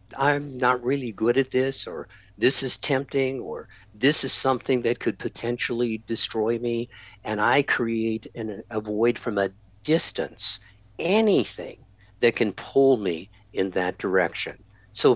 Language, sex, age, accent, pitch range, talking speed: English, male, 60-79, American, 105-125 Hz, 145 wpm